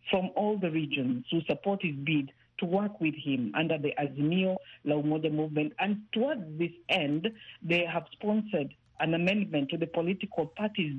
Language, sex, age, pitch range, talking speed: English, female, 50-69, 150-185 Hz, 165 wpm